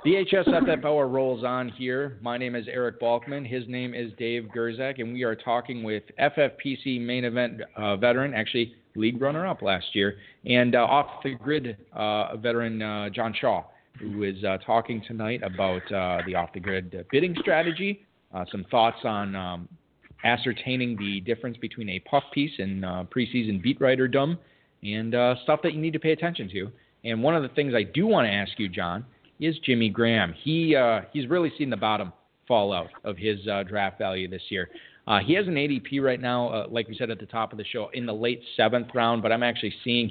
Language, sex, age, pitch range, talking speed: English, male, 40-59, 110-135 Hz, 200 wpm